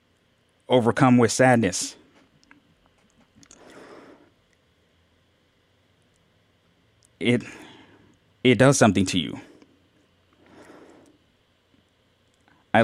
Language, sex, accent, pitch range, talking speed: English, male, American, 105-125 Hz, 45 wpm